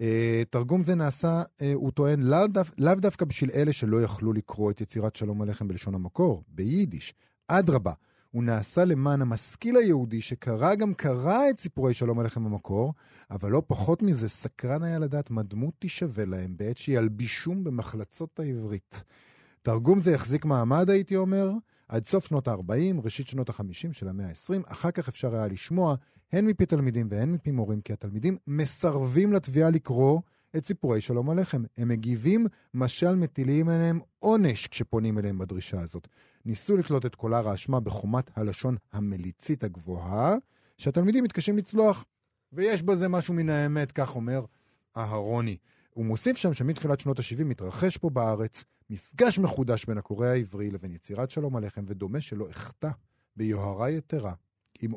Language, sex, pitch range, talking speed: Hebrew, male, 110-165 Hz, 155 wpm